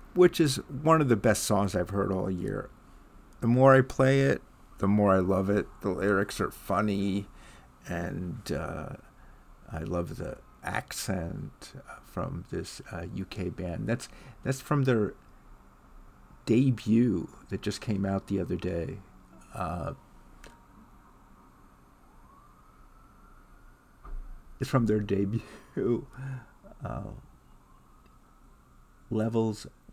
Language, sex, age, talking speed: English, male, 50-69, 110 wpm